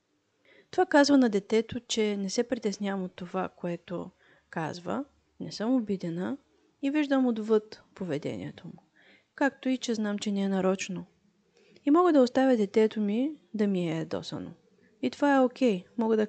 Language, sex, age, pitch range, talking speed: Bulgarian, female, 30-49, 200-255 Hz, 165 wpm